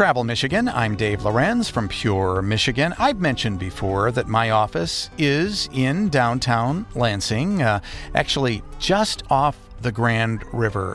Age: 50-69